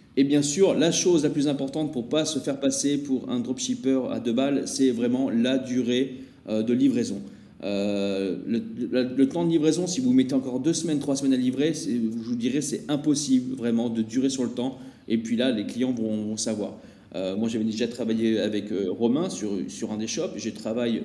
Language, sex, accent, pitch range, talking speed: French, male, French, 115-170 Hz, 225 wpm